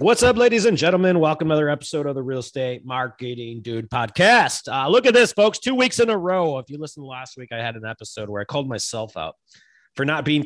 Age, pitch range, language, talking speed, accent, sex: 30-49, 110-155 Hz, English, 245 wpm, American, male